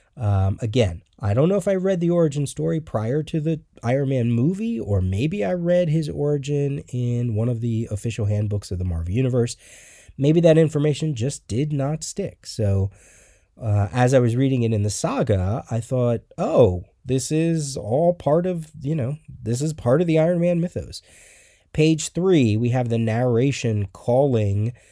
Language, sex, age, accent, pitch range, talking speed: English, male, 30-49, American, 105-140 Hz, 180 wpm